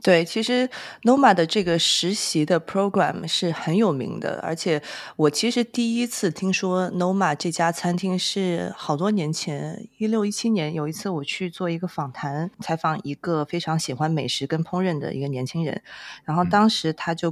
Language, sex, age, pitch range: Chinese, female, 20-39, 145-180 Hz